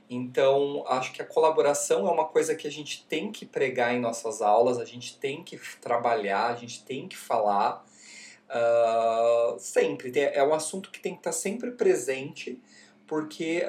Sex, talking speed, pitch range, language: male, 165 wpm, 115-190 Hz, Portuguese